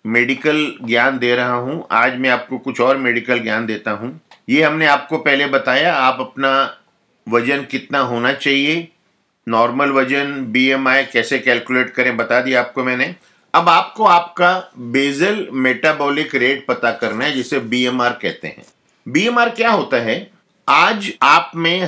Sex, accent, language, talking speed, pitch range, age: male, native, Hindi, 150 wpm, 120-145 Hz, 50-69